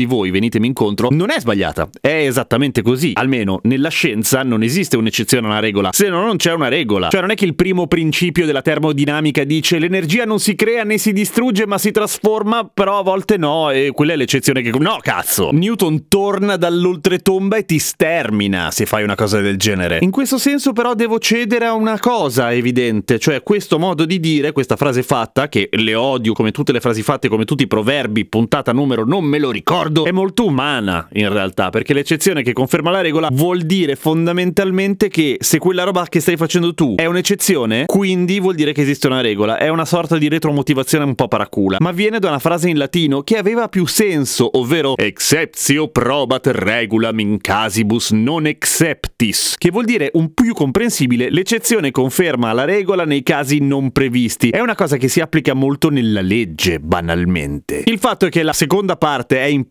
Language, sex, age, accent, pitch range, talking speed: Italian, male, 30-49, native, 125-190 Hz, 195 wpm